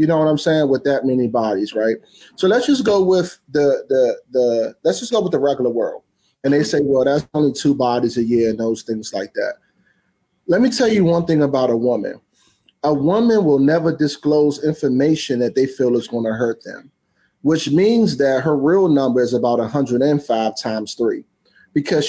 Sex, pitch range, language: male, 130-170 Hz, English